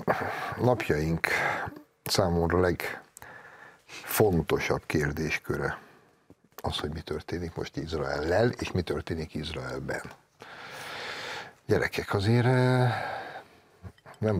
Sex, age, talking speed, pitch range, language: male, 60-79, 80 wpm, 80-95 Hz, Hungarian